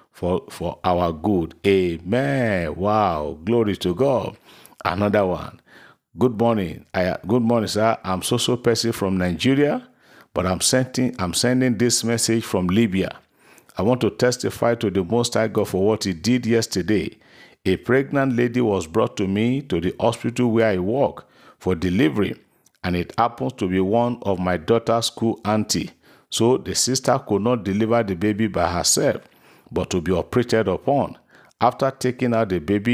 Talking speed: 165 wpm